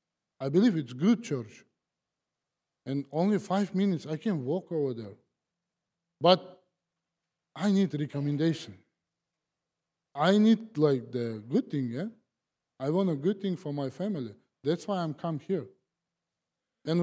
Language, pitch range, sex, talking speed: English, 155-185 Hz, male, 140 wpm